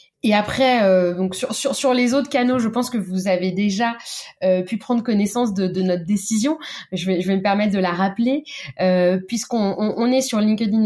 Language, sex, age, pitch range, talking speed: French, female, 20-39, 190-245 Hz, 215 wpm